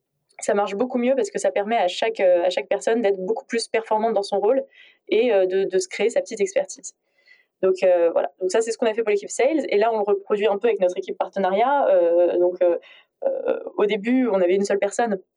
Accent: French